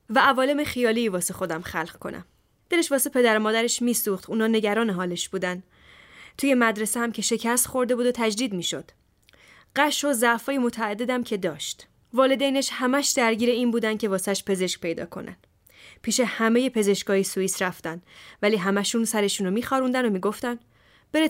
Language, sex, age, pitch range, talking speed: Persian, female, 10-29, 190-250 Hz, 160 wpm